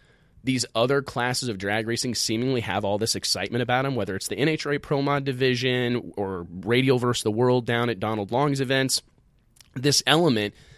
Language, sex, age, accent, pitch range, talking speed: English, male, 30-49, American, 110-135 Hz, 180 wpm